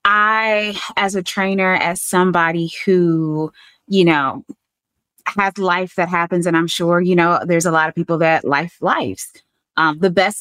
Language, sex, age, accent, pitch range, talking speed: English, female, 20-39, American, 160-210 Hz, 165 wpm